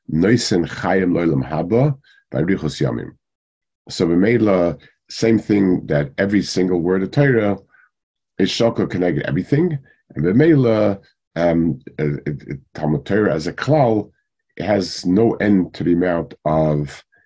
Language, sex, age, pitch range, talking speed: English, male, 50-69, 80-105 Hz, 90 wpm